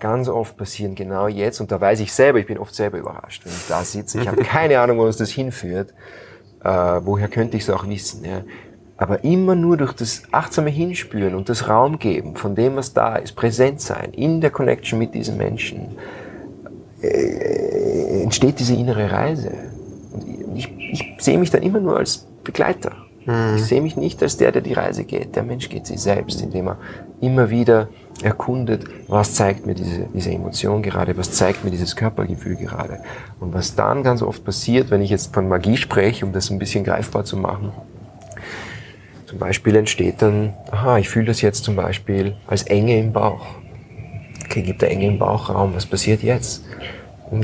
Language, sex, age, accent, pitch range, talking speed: German, male, 30-49, German, 100-120 Hz, 190 wpm